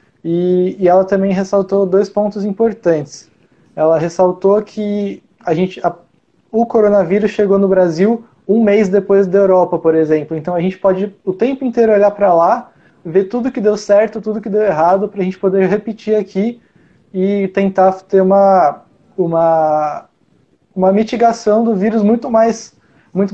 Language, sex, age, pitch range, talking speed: Portuguese, male, 20-39, 175-200 Hz, 150 wpm